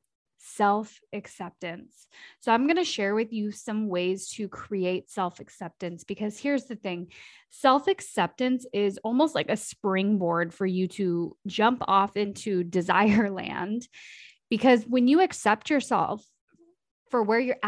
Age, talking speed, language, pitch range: 20-39, 145 wpm, English, 180-225 Hz